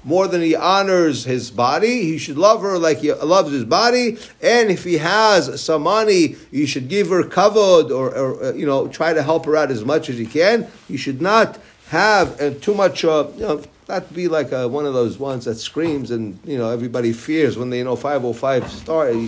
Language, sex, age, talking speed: English, male, 50-69, 220 wpm